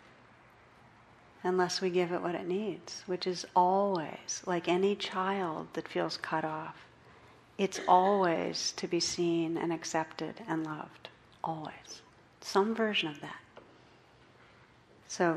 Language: English